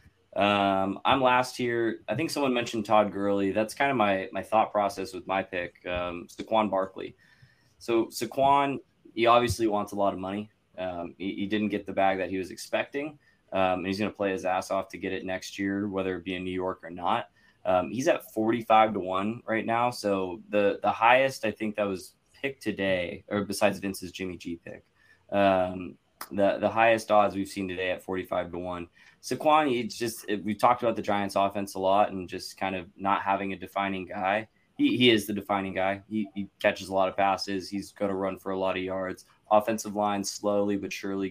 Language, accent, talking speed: English, American, 215 wpm